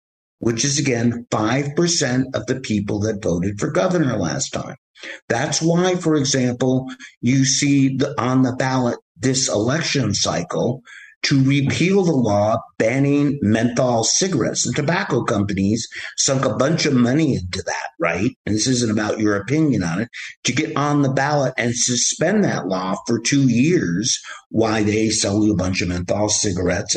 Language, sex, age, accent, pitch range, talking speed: English, male, 50-69, American, 110-155 Hz, 160 wpm